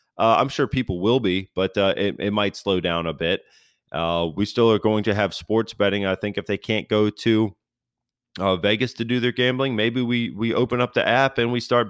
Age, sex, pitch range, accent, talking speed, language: 30-49, male, 90-115 Hz, American, 235 wpm, English